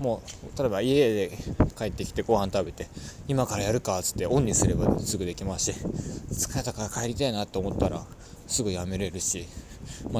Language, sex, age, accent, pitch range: Japanese, male, 20-39, native, 95-120 Hz